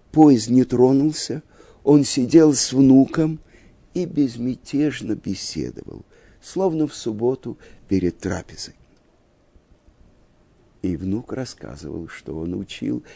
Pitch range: 100-135 Hz